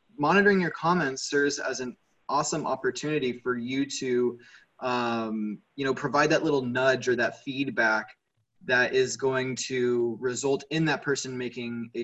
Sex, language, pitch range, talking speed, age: male, English, 120-145 Hz, 155 wpm, 20-39